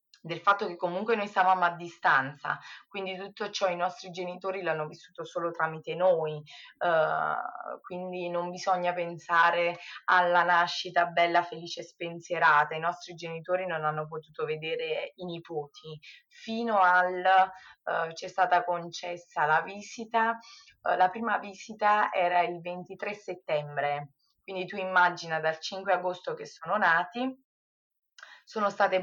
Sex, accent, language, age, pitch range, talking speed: female, native, Italian, 20-39, 165-190 Hz, 135 wpm